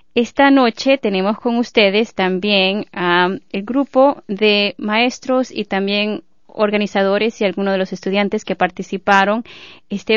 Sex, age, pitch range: female, 20-39, 190-230 Hz